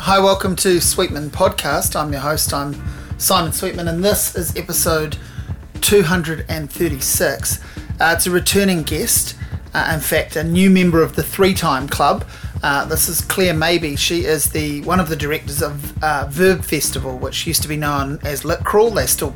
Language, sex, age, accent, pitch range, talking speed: English, male, 30-49, Australian, 150-185 Hz, 175 wpm